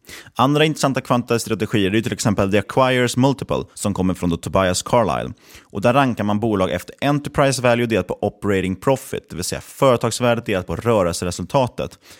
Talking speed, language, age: 165 wpm, Swedish, 30-49